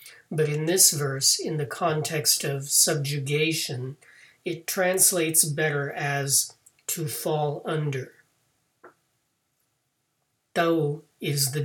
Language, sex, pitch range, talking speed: English, male, 125-155 Hz, 100 wpm